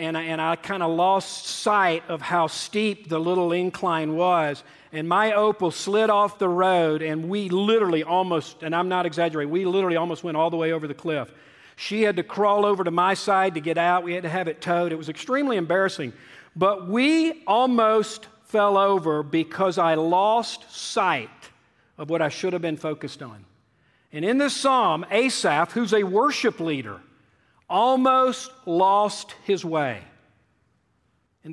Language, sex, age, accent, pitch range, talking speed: English, male, 50-69, American, 165-235 Hz, 175 wpm